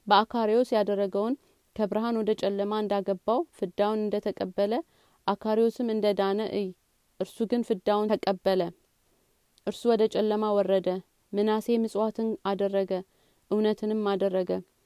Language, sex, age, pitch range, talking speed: Amharic, female, 30-49, 190-215 Hz, 85 wpm